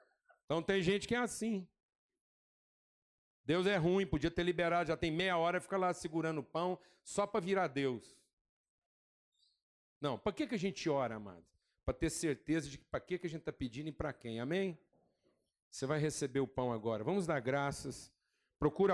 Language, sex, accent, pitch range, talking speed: Portuguese, male, Brazilian, 135-180 Hz, 185 wpm